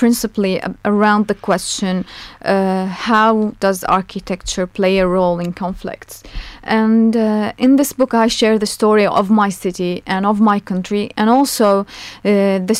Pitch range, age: 190-225 Hz, 30-49